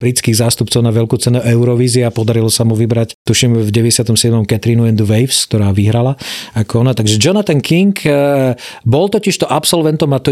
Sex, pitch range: male, 115-145 Hz